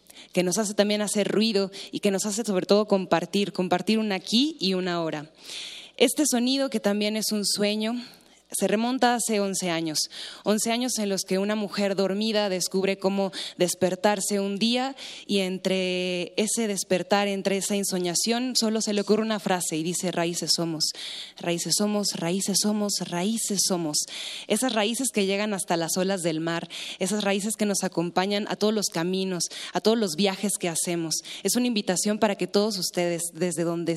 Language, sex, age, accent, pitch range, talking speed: Spanish, female, 20-39, Mexican, 175-210 Hz, 175 wpm